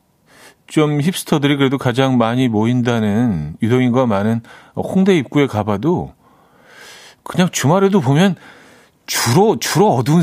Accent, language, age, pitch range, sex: native, Korean, 40-59, 105-145 Hz, male